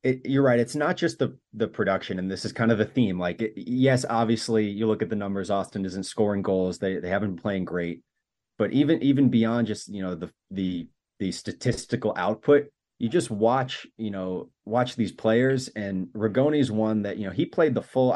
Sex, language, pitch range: male, English, 100-120 Hz